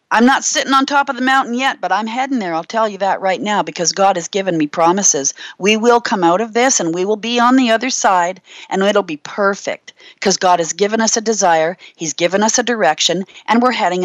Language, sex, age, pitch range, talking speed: English, female, 40-59, 180-245 Hz, 250 wpm